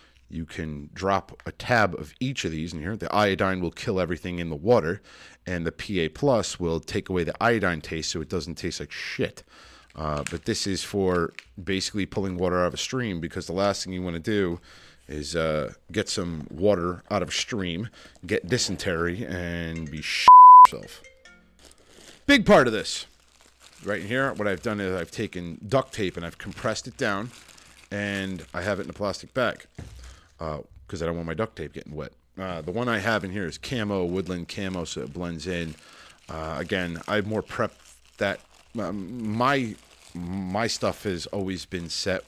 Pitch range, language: 80-100 Hz, English